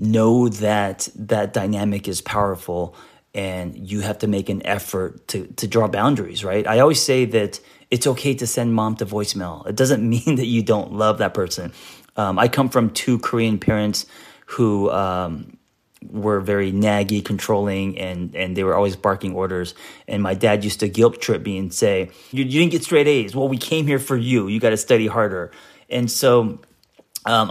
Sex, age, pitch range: male, 30-49, 100-120 Hz